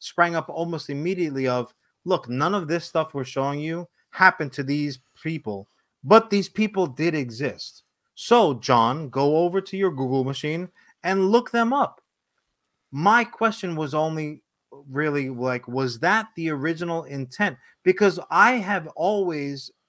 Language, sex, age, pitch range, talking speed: English, male, 30-49, 140-195 Hz, 150 wpm